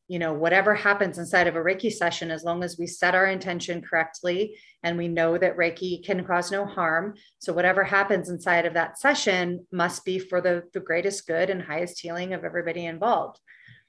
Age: 30-49